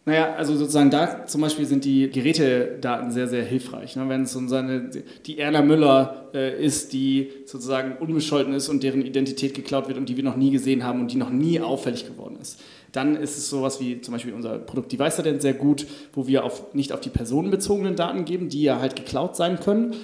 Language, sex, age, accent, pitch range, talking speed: German, male, 30-49, German, 130-155 Hz, 215 wpm